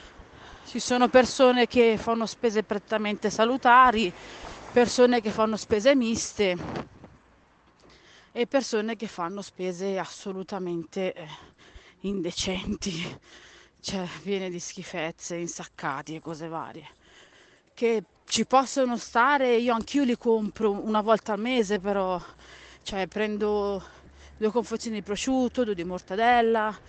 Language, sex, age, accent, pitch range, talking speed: Italian, female, 30-49, native, 205-250 Hz, 115 wpm